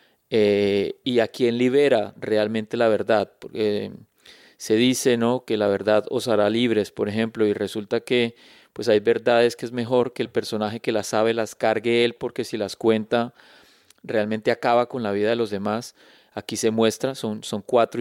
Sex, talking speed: male, 190 wpm